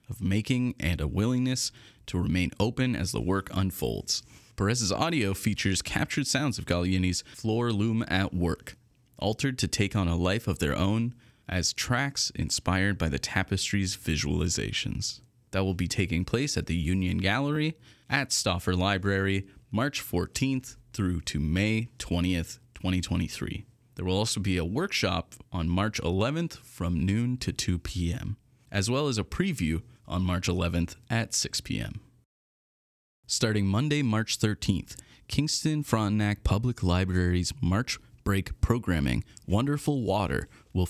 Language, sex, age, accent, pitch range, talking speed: English, male, 30-49, American, 90-120 Hz, 140 wpm